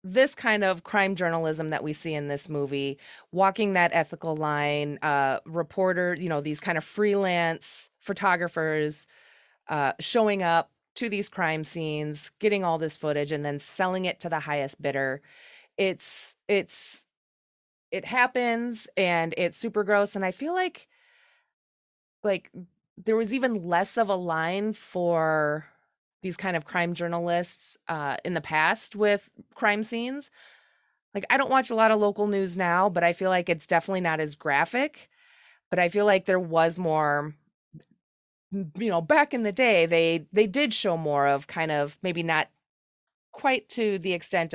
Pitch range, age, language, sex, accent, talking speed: 160-210 Hz, 20-39, English, female, American, 165 wpm